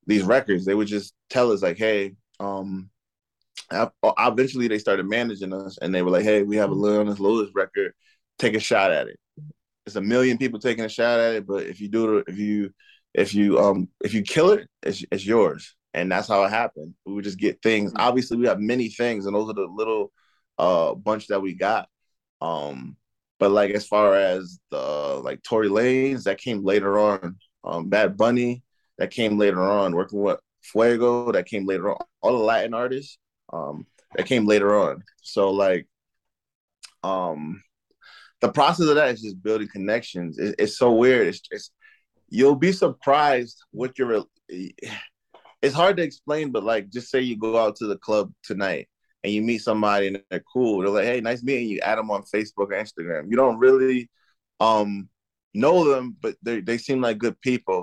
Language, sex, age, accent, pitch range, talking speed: English, male, 20-39, American, 100-130 Hz, 195 wpm